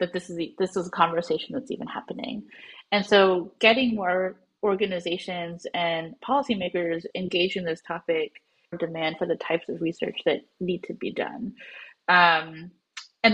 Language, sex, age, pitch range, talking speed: English, female, 30-49, 170-200 Hz, 155 wpm